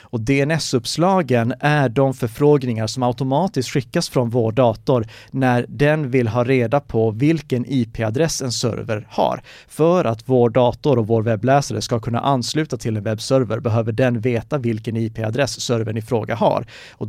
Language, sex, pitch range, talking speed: Swedish, male, 115-140 Hz, 160 wpm